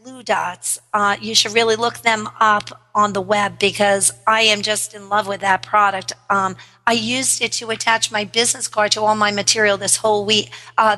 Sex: female